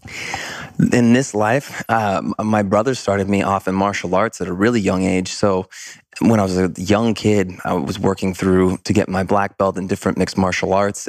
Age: 20-39